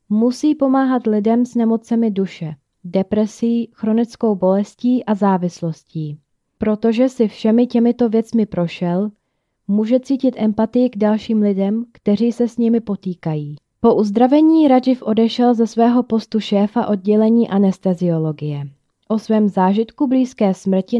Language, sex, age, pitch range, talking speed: Czech, female, 20-39, 190-230 Hz, 125 wpm